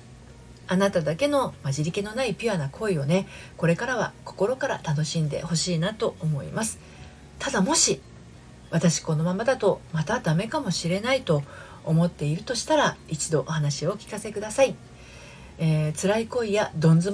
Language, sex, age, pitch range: Japanese, female, 40-59, 145-200 Hz